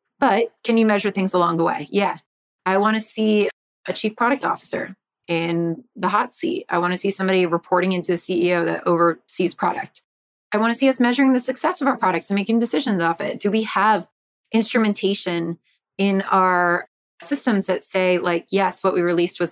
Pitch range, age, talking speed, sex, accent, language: 180-230 Hz, 30-49, 195 wpm, female, American, English